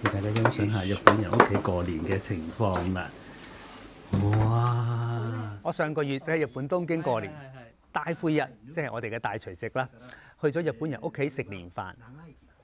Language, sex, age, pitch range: Chinese, male, 30-49, 110-160 Hz